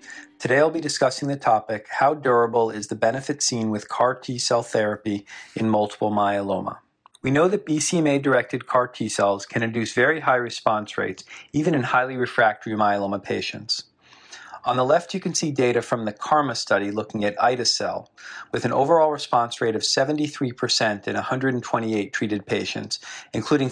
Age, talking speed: 40-59, 160 wpm